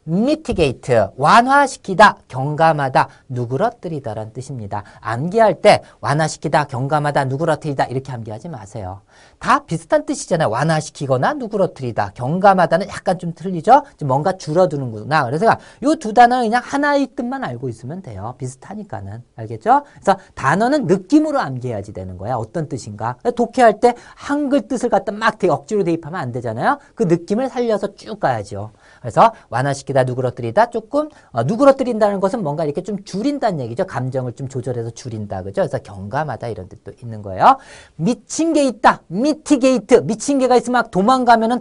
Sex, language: male, Korean